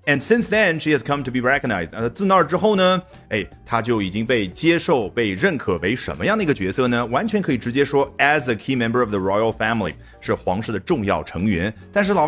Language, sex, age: Chinese, male, 30-49